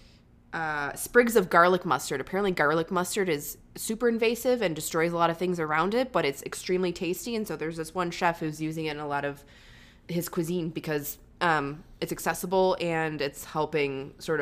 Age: 20-39